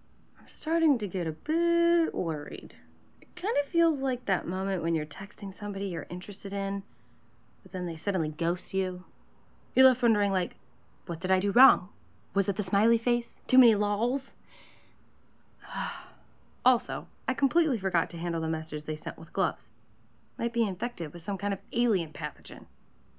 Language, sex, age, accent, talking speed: English, female, 30-49, American, 170 wpm